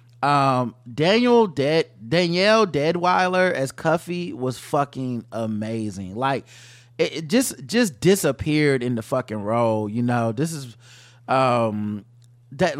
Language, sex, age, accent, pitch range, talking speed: English, male, 20-39, American, 120-160 Hz, 120 wpm